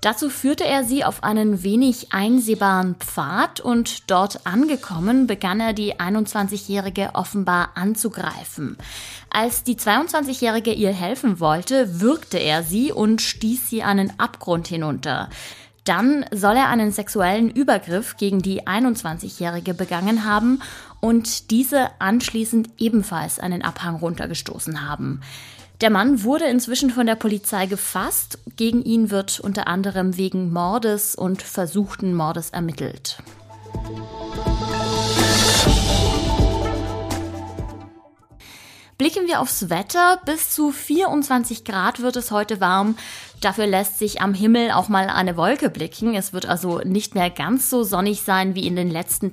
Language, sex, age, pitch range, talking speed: German, female, 20-39, 175-230 Hz, 130 wpm